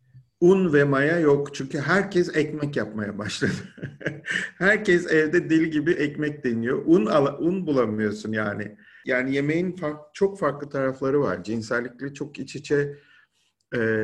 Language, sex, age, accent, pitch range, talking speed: Turkish, male, 50-69, native, 110-130 Hz, 135 wpm